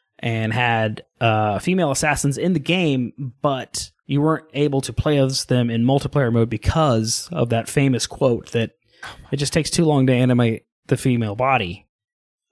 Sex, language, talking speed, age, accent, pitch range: male, English, 175 wpm, 20-39, American, 110-145 Hz